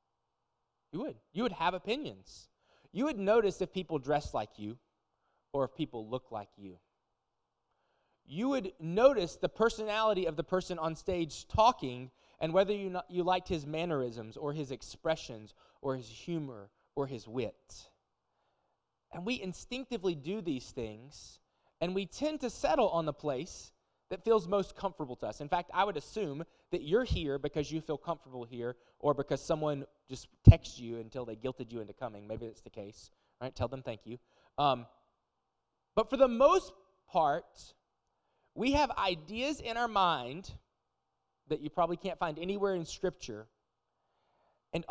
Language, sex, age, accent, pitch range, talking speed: English, male, 20-39, American, 130-190 Hz, 165 wpm